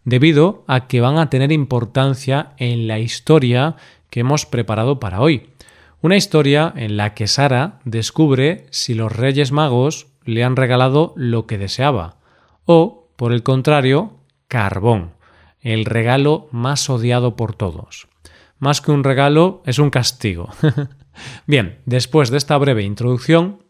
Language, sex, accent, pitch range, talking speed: Spanish, male, Spanish, 115-145 Hz, 145 wpm